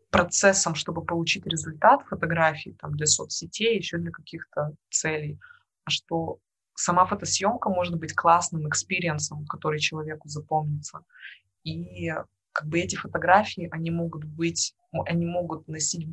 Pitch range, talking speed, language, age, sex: 155-175 Hz, 125 wpm, Russian, 20-39, female